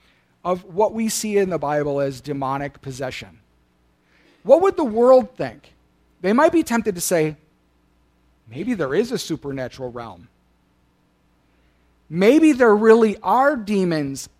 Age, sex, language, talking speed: 40-59, male, English, 135 wpm